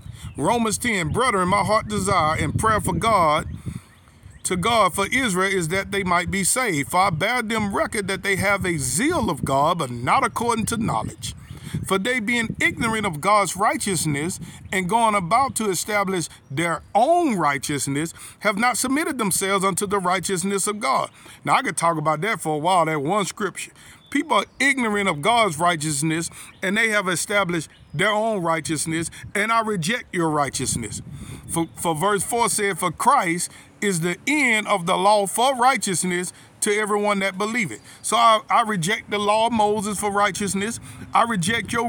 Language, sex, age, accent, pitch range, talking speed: English, male, 50-69, American, 185-235 Hz, 180 wpm